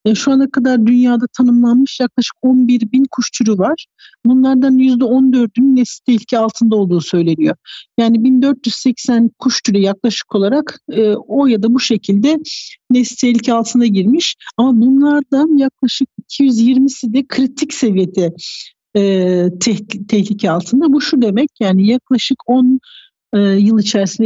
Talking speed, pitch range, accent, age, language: 125 wpm, 220-260 Hz, native, 60-79, Turkish